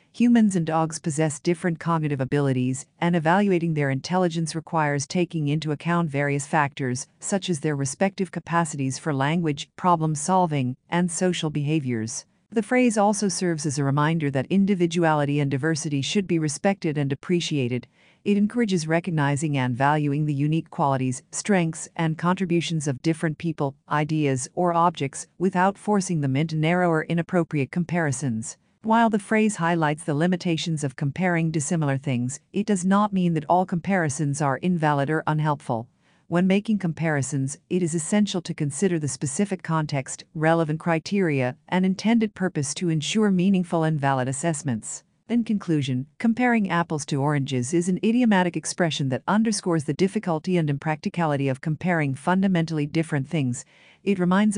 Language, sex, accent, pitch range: English, female, American, 145-180 Hz